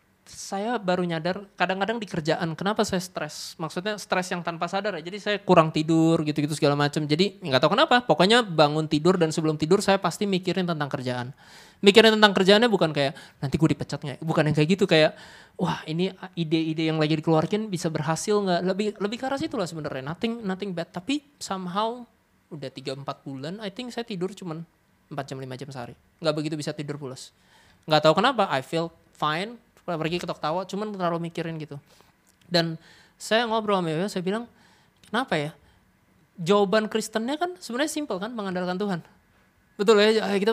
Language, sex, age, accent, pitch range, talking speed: Indonesian, male, 20-39, native, 155-210 Hz, 185 wpm